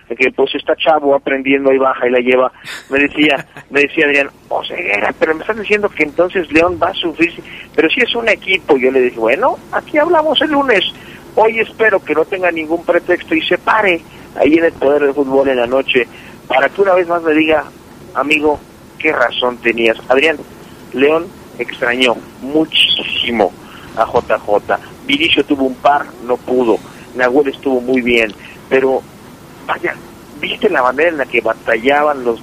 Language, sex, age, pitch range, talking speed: Spanish, male, 50-69, 125-170 Hz, 180 wpm